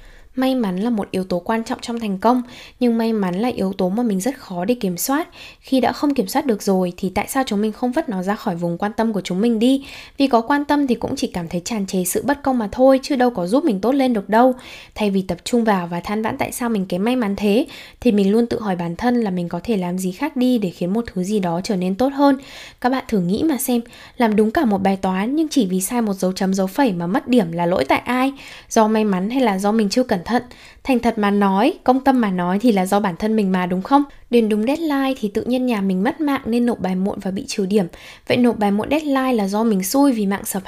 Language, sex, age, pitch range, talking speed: Vietnamese, female, 10-29, 195-250 Hz, 290 wpm